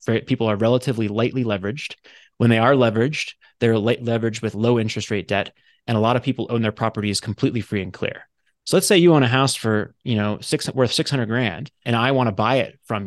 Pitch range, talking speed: 115-145 Hz, 235 wpm